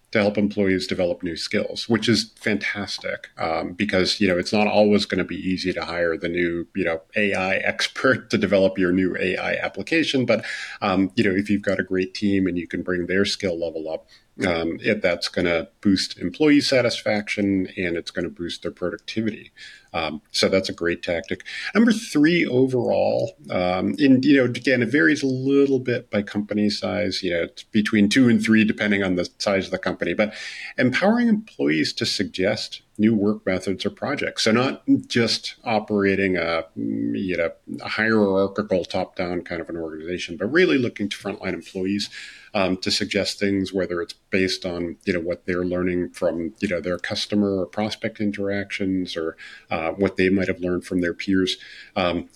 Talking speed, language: 190 wpm, English